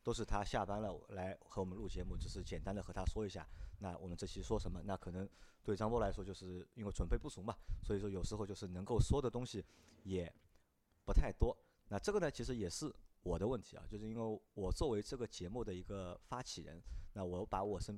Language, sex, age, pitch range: Chinese, male, 30-49, 90-105 Hz